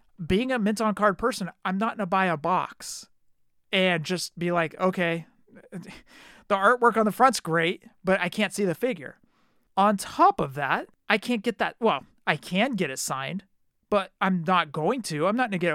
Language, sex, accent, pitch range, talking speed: English, male, American, 155-200 Hz, 205 wpm